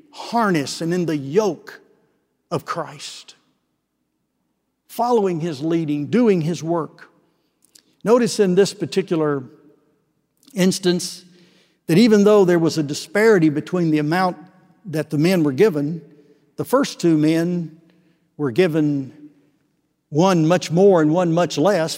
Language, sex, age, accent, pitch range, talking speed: English, male, 60-79, American, 145-190 Hz, 125 wpm